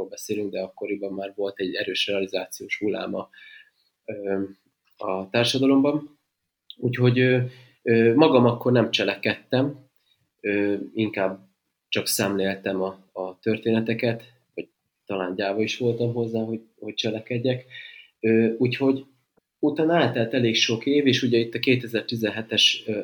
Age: 30-49